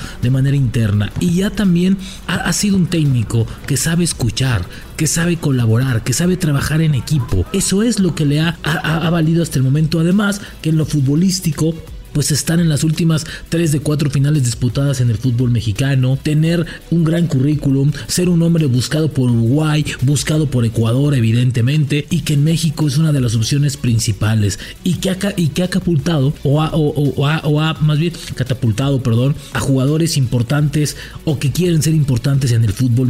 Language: English